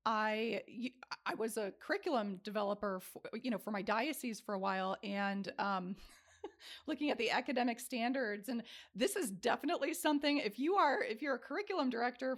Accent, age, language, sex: American, 30-49, English, female